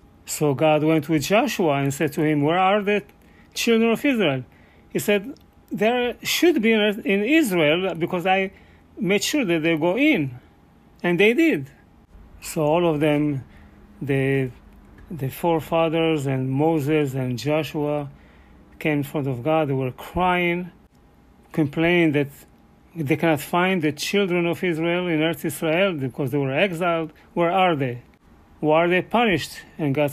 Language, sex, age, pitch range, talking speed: English, male, 40-59, 140-180 Hz, 155 wpm